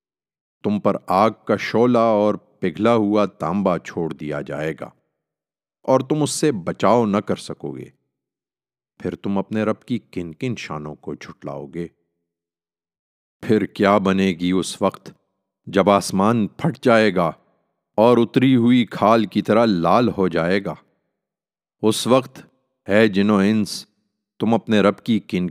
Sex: male